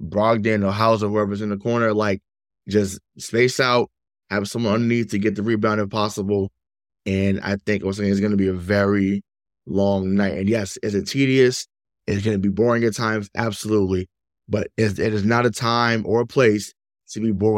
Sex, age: male, 20-39